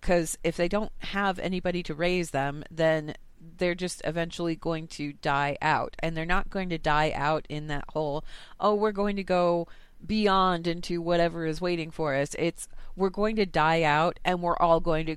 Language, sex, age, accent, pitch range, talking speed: English, female, 30-49, American, 150-180 Hz, 200 wpm